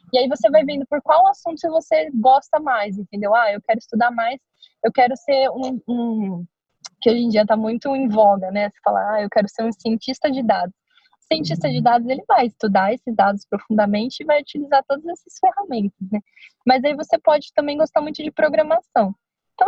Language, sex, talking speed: Portuguese, female, 205 wpm